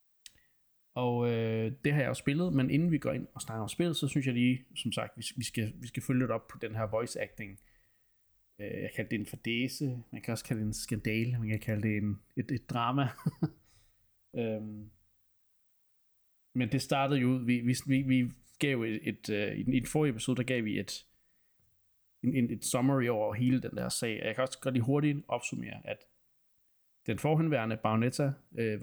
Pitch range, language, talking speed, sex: 110-135 Hz, Danish, 200 wpm, male